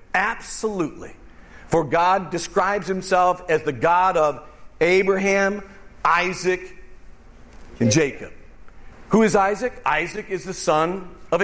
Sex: male